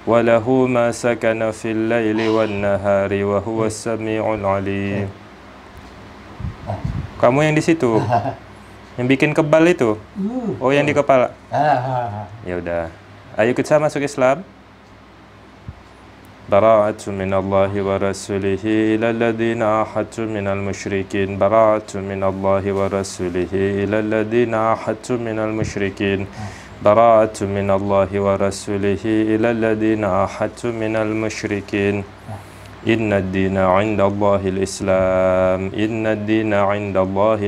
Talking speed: 90 wpm